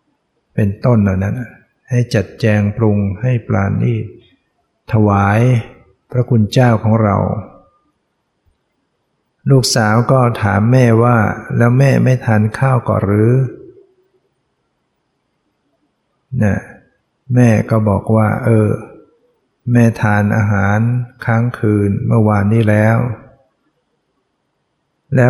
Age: 60-79